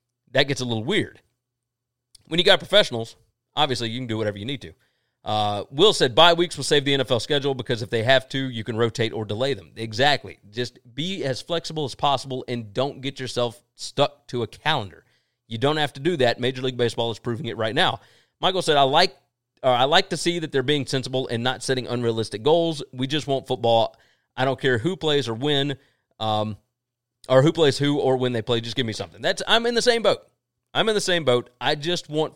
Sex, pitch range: male, 120-150 Hz